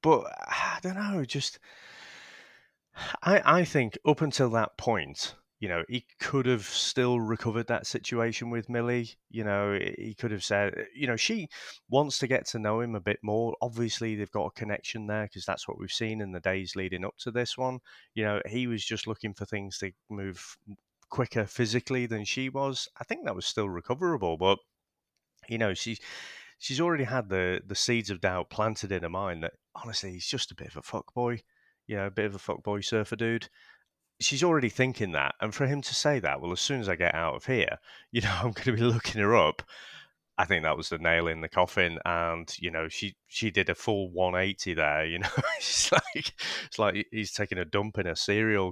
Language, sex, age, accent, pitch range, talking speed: English, male, 30-49, British, 95-120 Hz, 215 wpm